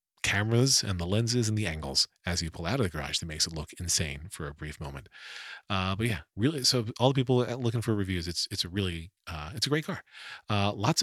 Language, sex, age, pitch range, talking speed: English, male, 40-59, 90-120 Hz, 245 wpm